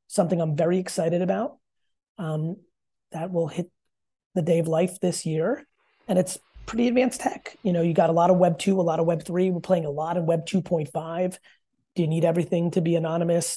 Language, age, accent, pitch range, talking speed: English, 30-49, American, 160-190 Hz, 220 wpm